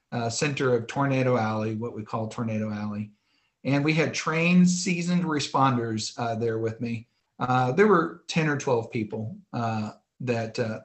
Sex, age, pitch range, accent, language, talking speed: male, 50-69, 120-145 Hz, American, English, 165 wpm